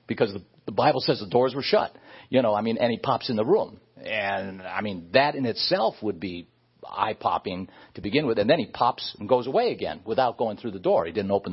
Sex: male